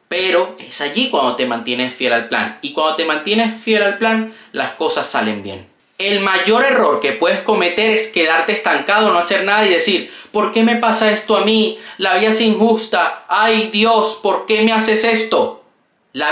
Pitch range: 160-230 Hz